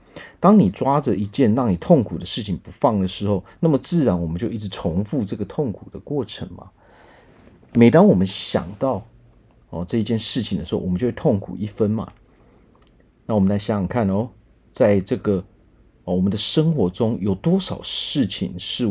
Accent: native